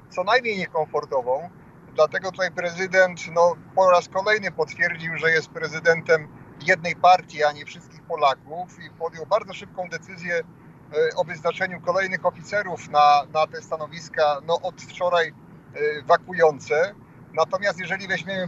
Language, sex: Polish, male